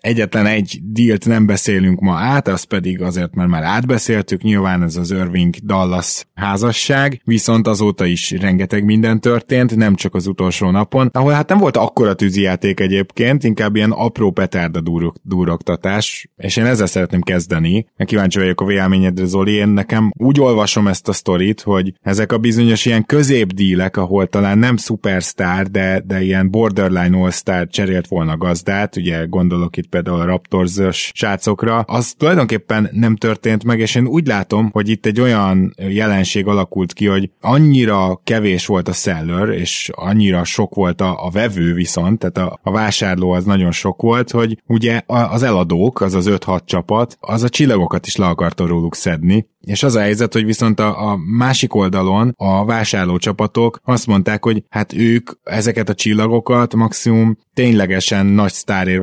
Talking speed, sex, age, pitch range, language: 170 wpm, male, 20-39, 95-115 Hz, Hungarian